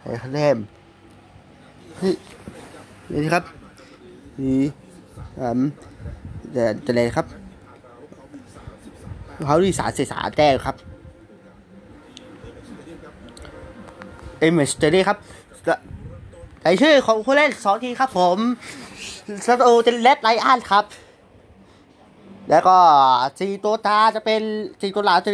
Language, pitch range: Thai, 150-215 Hz